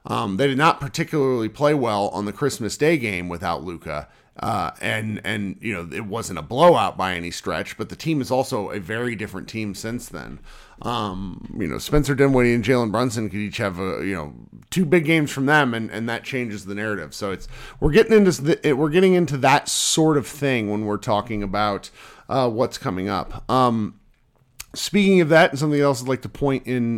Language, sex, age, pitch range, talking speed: English, male, 40-59, 105-140 Hz, 210 wpm